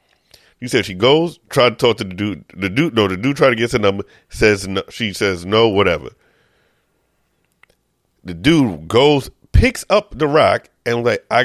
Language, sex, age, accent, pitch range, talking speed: English, male, 40-59, American, 95-135 Hz, 190 wpm